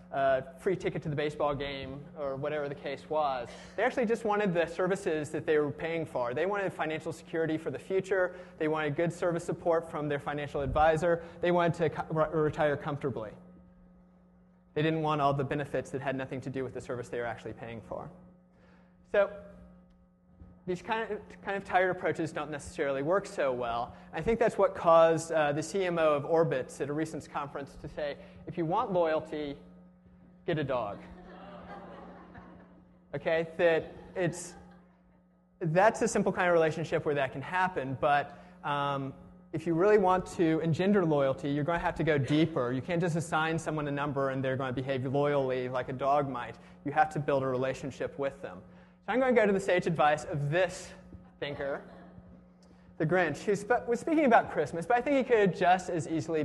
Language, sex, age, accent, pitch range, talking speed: English, male, 30-49, American, 140-180 Hz, 195 wpm